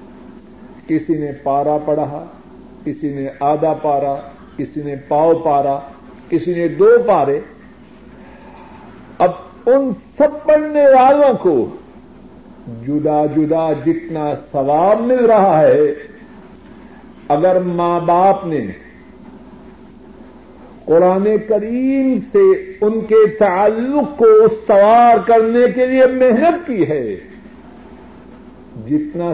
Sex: male